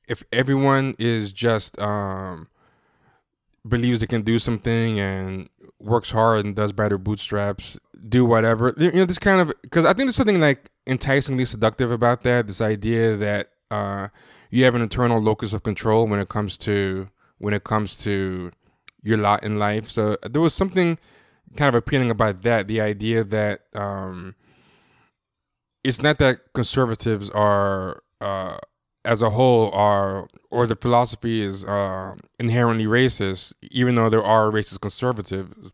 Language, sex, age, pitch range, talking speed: English, male, 20-39, 100-120 Hz, 155 wpm